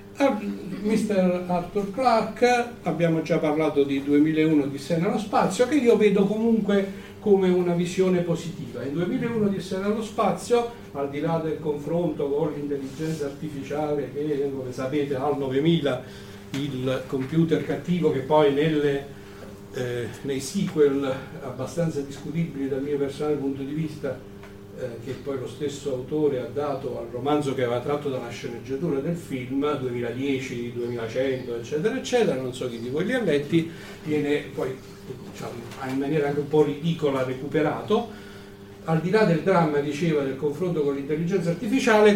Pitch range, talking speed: 135-190 Hz, 145 wpm